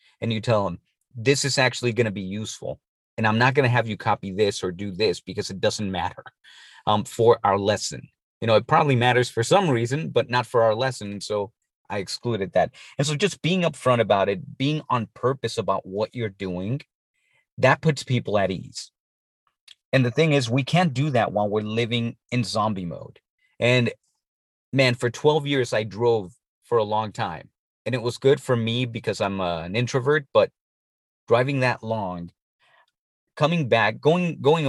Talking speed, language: 190 wpm, English